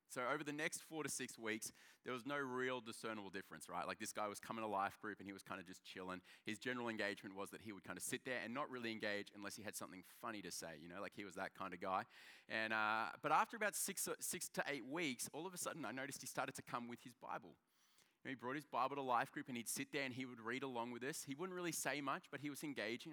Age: 30-49